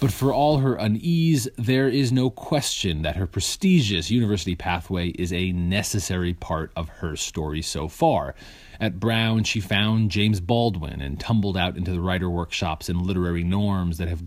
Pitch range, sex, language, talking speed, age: 85-115 Hz, male, English, 170 wpm, 30-49